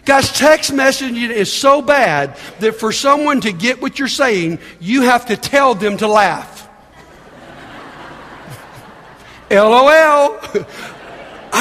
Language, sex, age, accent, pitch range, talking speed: English, male, 50-69, American, 225-290 Hz, 115 wpm